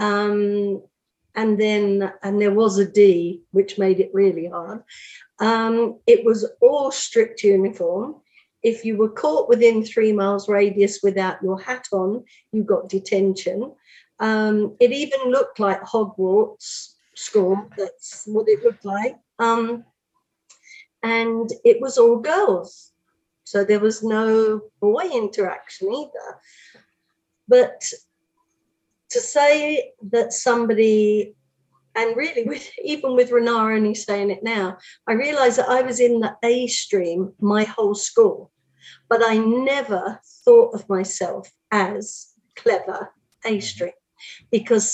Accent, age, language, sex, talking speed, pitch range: British, 50-69, English, female, 125 wpm, 200-255 Hz